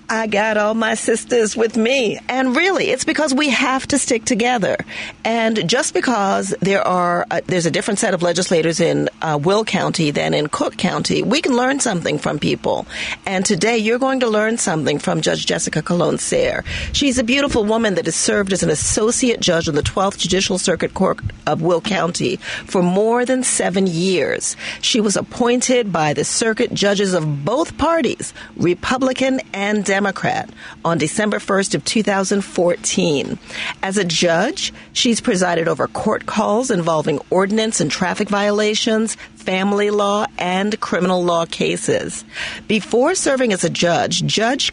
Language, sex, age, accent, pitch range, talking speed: English, female, 40-59, American, 175-235 Hz, 160 wpm